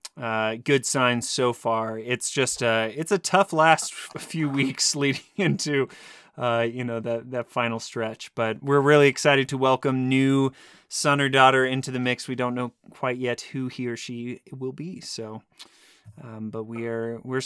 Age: 30-49